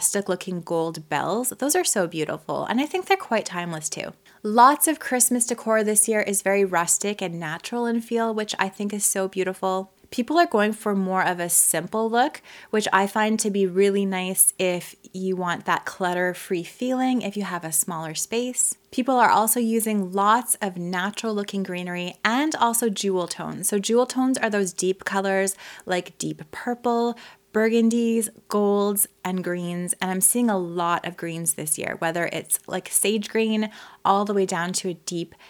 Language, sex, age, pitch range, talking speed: English, female, 20-39, 185-235 Hz, 185 wpm